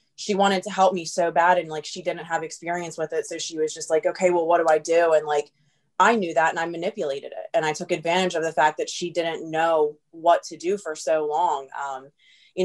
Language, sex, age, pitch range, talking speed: English, female, 20-39, 155-185 Hz, 255 wpm